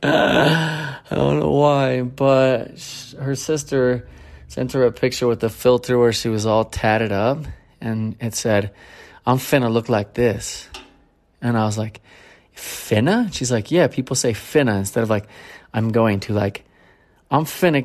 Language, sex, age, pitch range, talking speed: English, male, 30-49, 110-135 Hz, 170 wpm